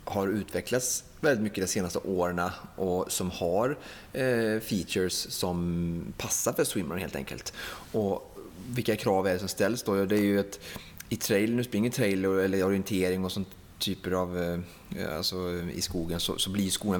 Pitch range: 90-105 Hz